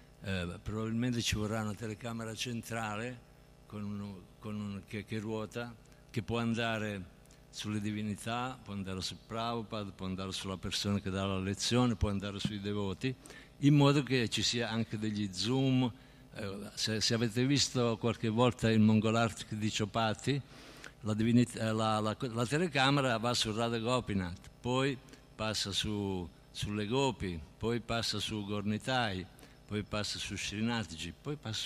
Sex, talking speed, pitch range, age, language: male, 150 wpm, 100-125 Hz, 60-79, Italian